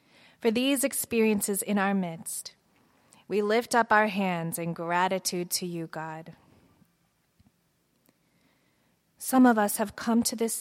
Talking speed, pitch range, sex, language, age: 130 wpm, 175-205 Hz, female, English, 20-39